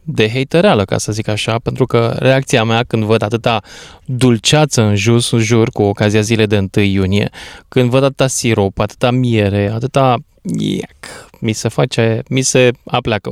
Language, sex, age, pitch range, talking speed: Romanian, male, 20-39, 105-130 Hz, 170 wpm